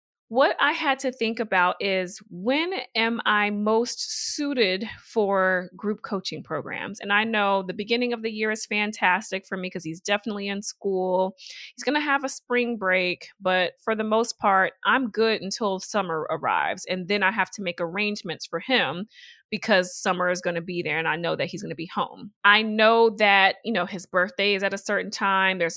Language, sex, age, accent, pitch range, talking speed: English, female, 30-49, American, 185-220 Hz, 205 wpm